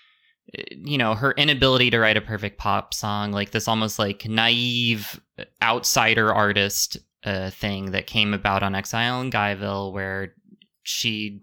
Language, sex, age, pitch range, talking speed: English, male, 20-39, 100-130 Hz, 145 wpm